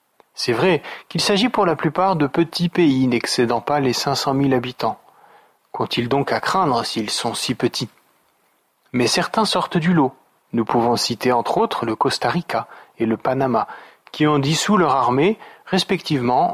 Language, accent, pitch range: French, French, 125-180 Hz